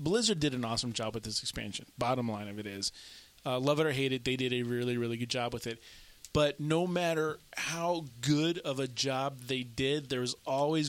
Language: English